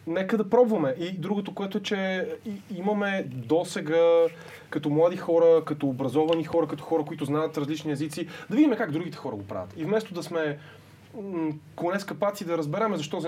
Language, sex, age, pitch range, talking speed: Bulgarian, male, 20-39, 145-190 Hz, 175 wpm